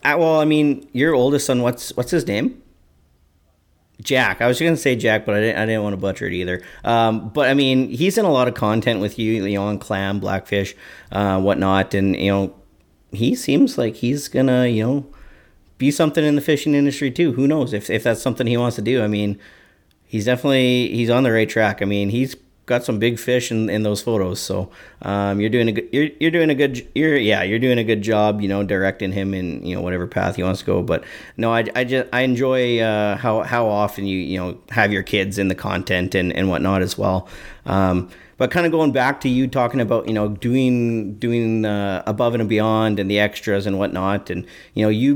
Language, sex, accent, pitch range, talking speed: English, male, American, 95-125 Hz, 235 wpm